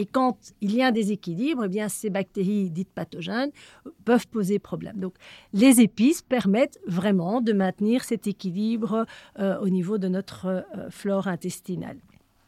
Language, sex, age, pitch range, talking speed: French, female, 40-59, 195-240 Hz, 160 wpm